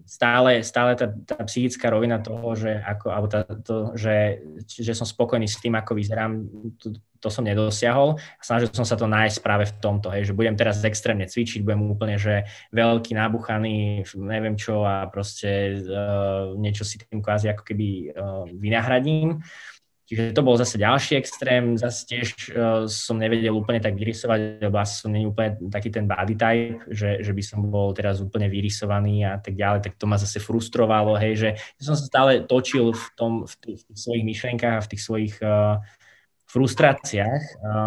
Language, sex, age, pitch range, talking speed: Slovak, male, 20-39, 105-115 Hz, 185 wpm